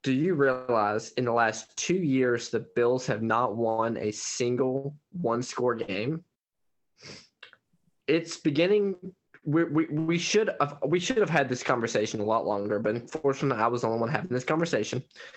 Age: 10-29